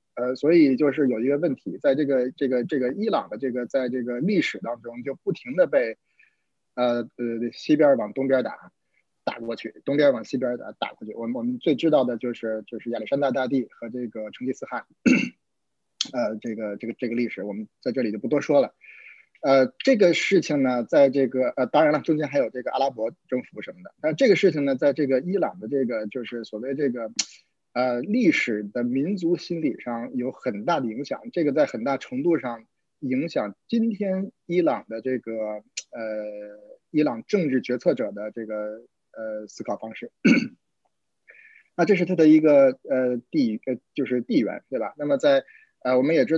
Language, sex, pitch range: Chinese, male, 120-155 Hz